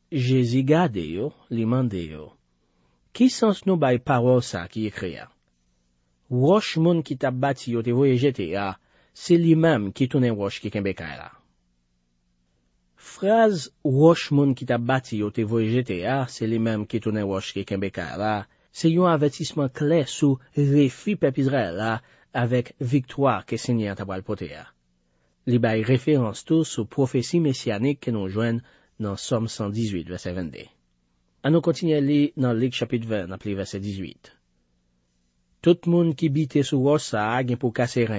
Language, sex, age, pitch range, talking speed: French, male, 40-59, 95-145 Hz, 150 wpm